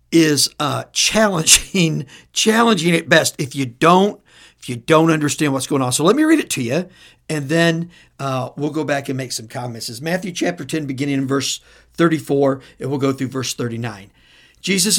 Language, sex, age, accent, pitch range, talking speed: English, male, 60-79, American, 140-230 Hz, 190 wpm